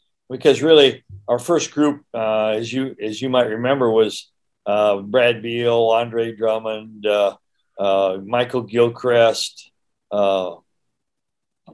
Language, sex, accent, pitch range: English, male, American, 110-130 Hz